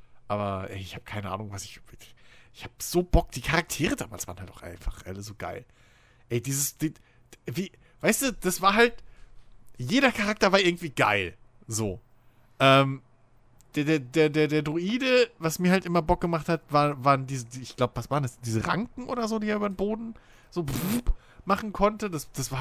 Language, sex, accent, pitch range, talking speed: German, male, German, 125-180 Hz, 200 wpm